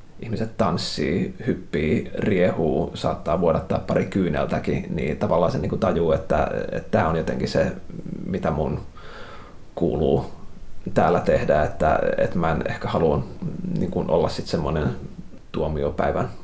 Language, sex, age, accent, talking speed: Finnish, male, 30-49, native, 130 wpm